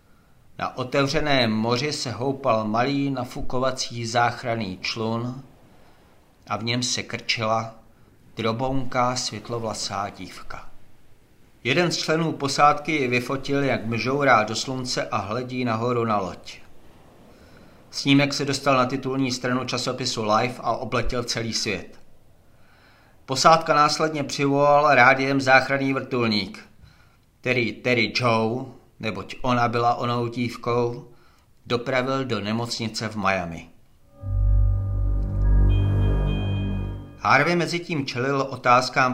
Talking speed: 105 wpm